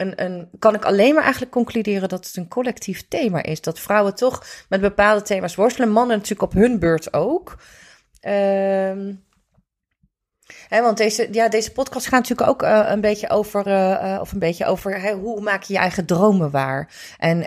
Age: 30-49